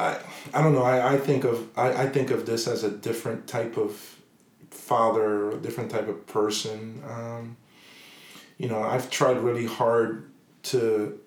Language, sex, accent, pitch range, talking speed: English, male, American, 110-125 Hz, 175 wpm